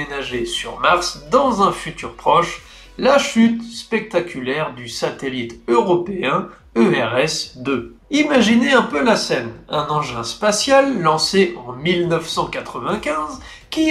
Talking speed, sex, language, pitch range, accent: 105 wpm, male, French, 140-220 Hz, French